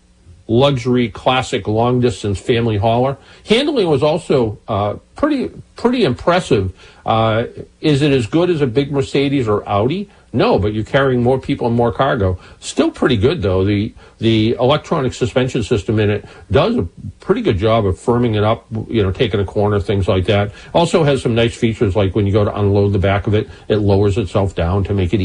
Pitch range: 100-125 Hz